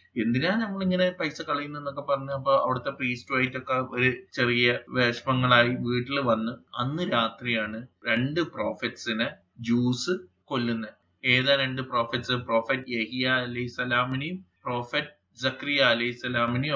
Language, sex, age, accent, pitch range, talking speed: Malayalam, male, 20-39, native, 115-135 Hz, 55 wpm